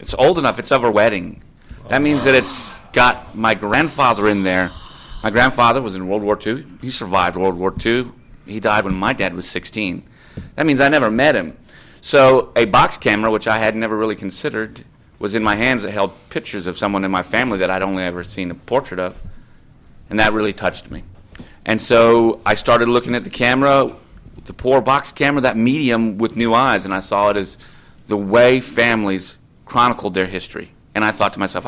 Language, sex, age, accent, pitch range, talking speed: English, male, 40-59, American, 95-115 Hz, 205 wpm